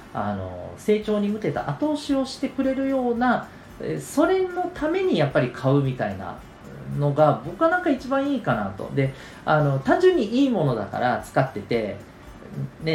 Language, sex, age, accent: Japanese, male, 40-59, native